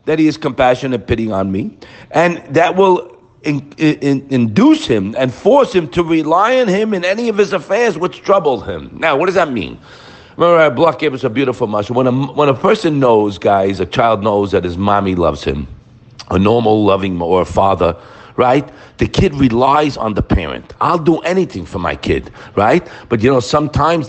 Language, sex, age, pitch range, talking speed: English, male, 50-69, 125-195 Hz, 200 wpm